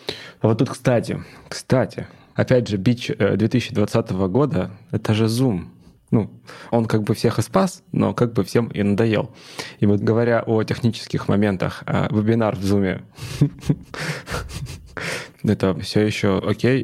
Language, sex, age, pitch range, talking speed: Russian, male, 20-39, 100-120 Hz, 140 wpm